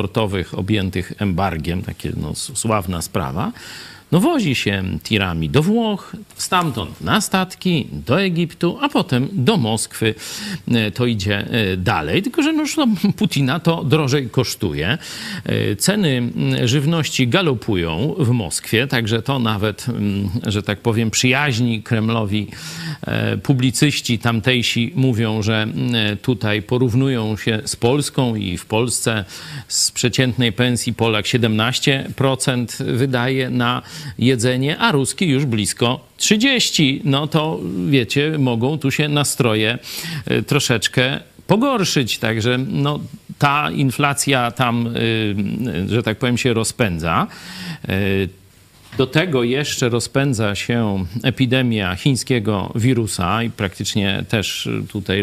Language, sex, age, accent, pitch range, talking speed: Polish, male, 50-69, native, 110-140 Hz, 105 wpm